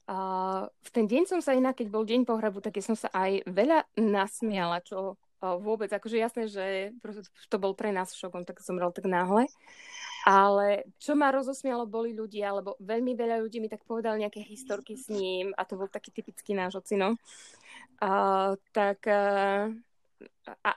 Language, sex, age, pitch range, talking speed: Slovak, female, 20-39, 195-230 Hz, 175 wpm